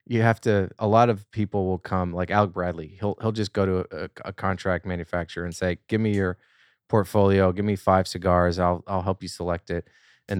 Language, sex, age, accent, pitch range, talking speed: English, male, 20-39, American, 90-100 Hz, 220 wpm